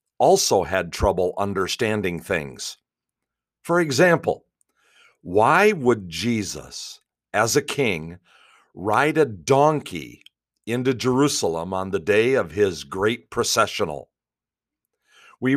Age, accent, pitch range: 50-69, American, 90-125 Hz